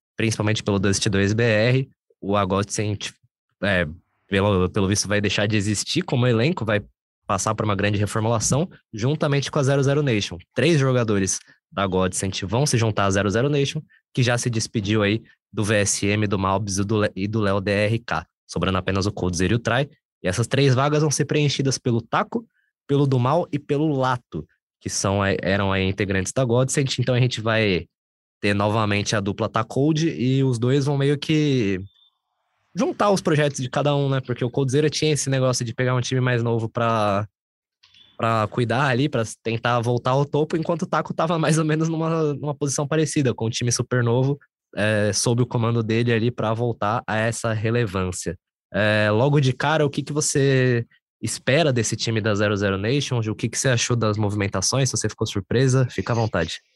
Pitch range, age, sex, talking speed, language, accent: 105-140 Hz, 20-39, male, 185 wpm, Portuguese, Brazilian